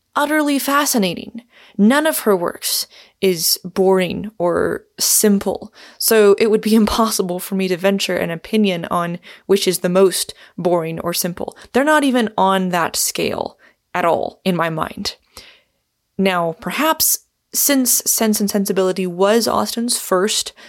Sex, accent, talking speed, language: female, American, 140 wpm, English